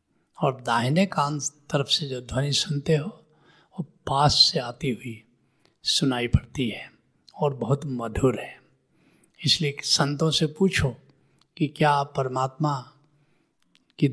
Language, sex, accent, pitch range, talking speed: Hindi, male, native, 130-160 Hz, 125 wpm